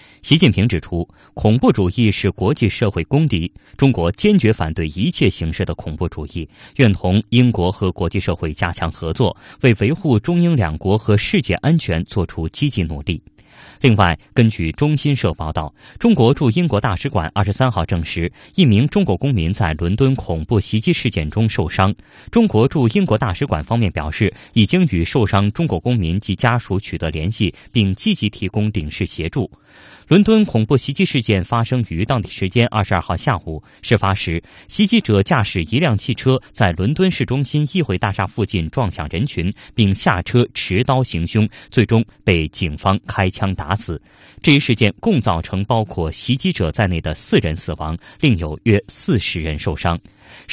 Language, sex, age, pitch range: Chinese, male, 20-39, 85-125 Hz